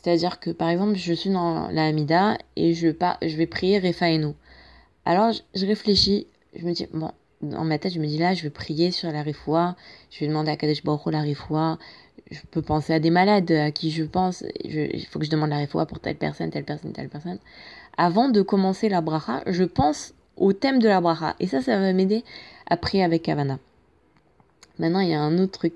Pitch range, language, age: 160-205 Hz, French, 20-39